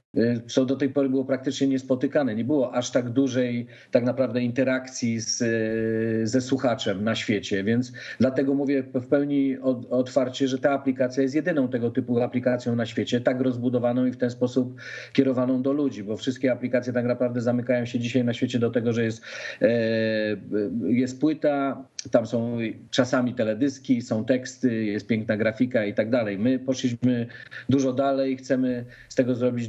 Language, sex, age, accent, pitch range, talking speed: Polish, male, 40-59, native, 120-130 Hz, 160 wpm